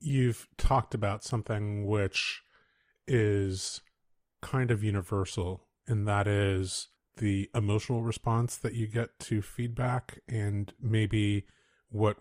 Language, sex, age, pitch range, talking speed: English, male, 30-49, 95-110 Hz, 115 wpm